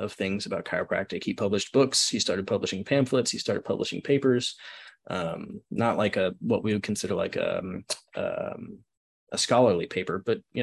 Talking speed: 175 wpm